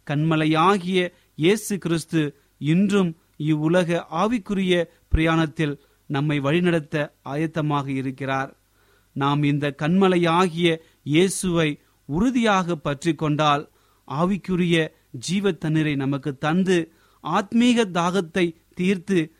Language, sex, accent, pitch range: Tamil, male, native, 140-180 Hz